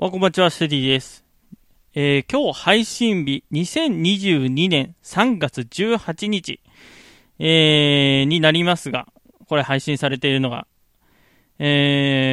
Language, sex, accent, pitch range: Japanese, male, native, 135-185 Hz